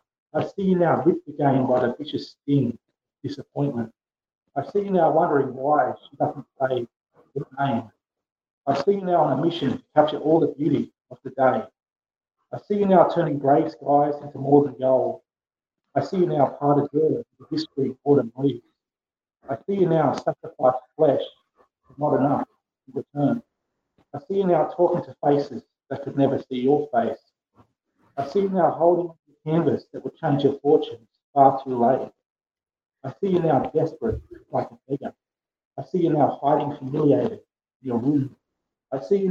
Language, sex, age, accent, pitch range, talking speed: English, male, 40-59, Australian, 130-160 Hz, 180 wpm